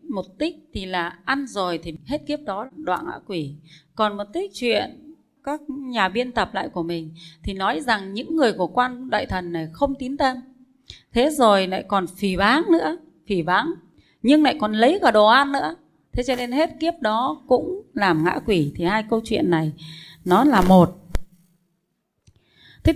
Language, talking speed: Vietnamese, 190 wpm